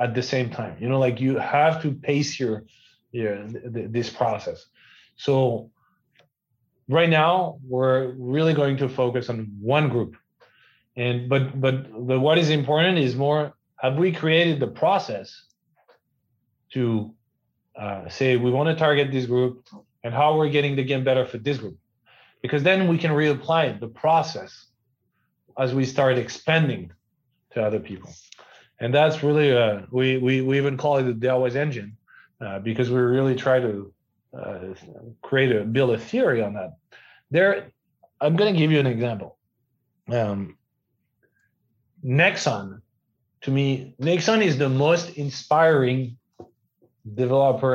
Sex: male